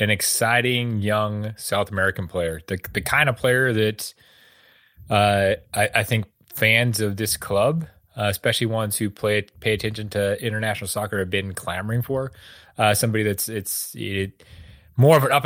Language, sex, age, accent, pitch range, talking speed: English, male, 30-49, American, 100-120 Hz, 165 wpm